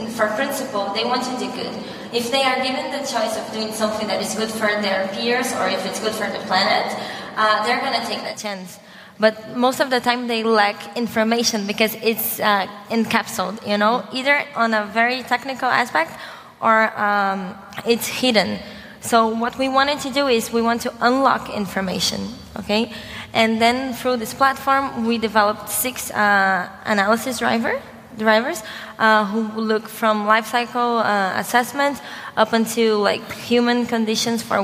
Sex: female